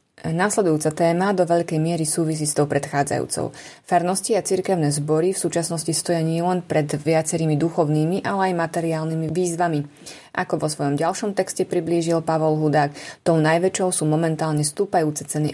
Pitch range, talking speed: 155-180 Hz, 145 wpm